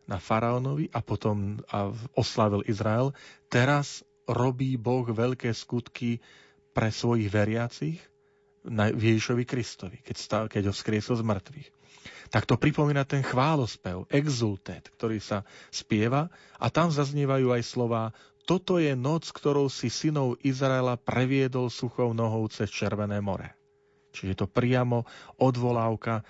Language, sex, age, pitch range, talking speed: Slovak, male, 40-59, 110-140 Hz, 120 wpm